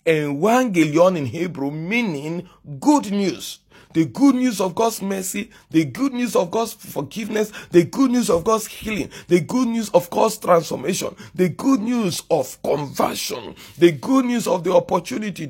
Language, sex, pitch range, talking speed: English, male, 160-225 Hz, 160 wpm